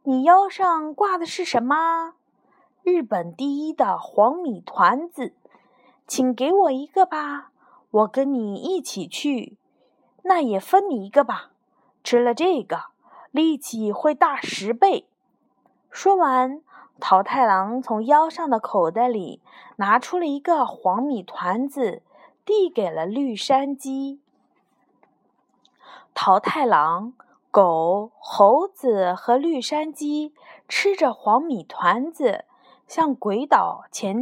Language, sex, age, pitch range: Chinese, female, 20-39, 220-330 Hz